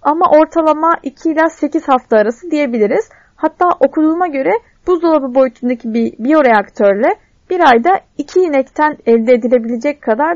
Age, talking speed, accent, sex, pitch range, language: 30-49, 125 wpm, native, female, 255-320 Hz, Turkish